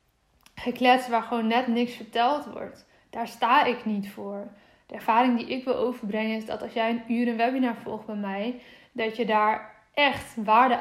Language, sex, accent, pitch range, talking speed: Dutch, female, Dutch, 215-250 Hz, 190 wpm